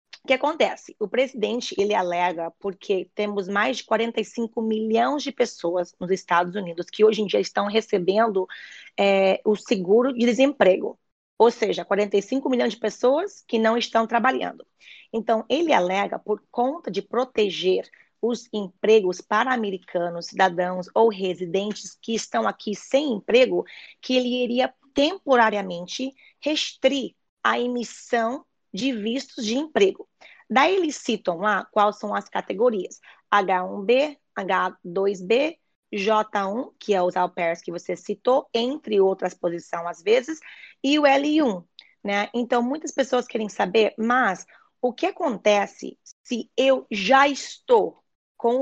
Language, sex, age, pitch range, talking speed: Portuguese, female, 20-39, 200-260 Hz, 135 wpm